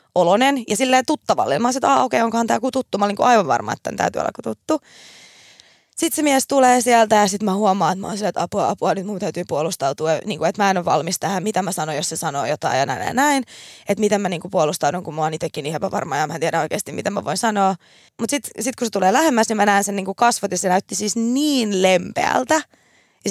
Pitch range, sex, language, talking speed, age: 185-245 Hz, female, Finnish, 255 wpm, 20-39